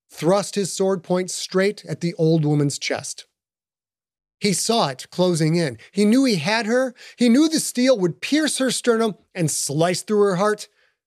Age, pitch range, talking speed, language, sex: 30-49, 150-200 Hz, 180 wpm, English, male